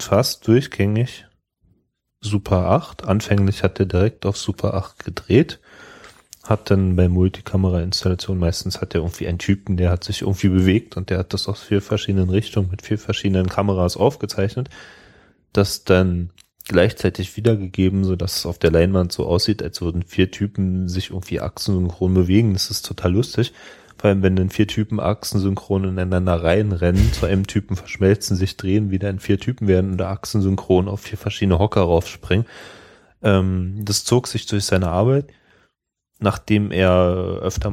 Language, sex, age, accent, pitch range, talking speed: German, male, 30-49, German, 90-105 Hz, 160 wpm